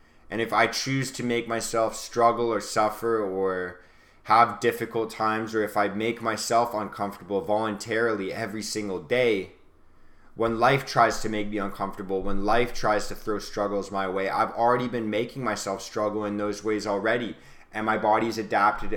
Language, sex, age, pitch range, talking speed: English, male, 20-39, 90-115 Hz, 170 wpm